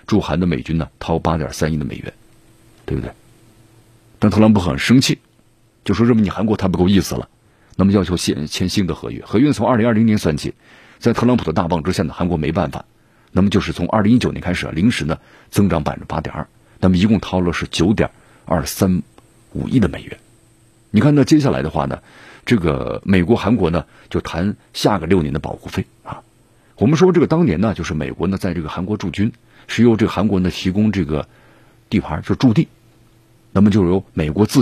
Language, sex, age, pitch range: Chinese, male, 50-69, 90-115 Hz